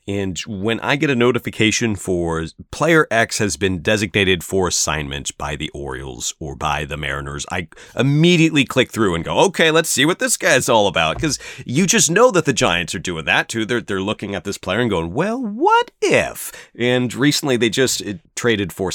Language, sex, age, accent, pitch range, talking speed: English, male, 30-49, American, 85-125 Hz, 200 wpm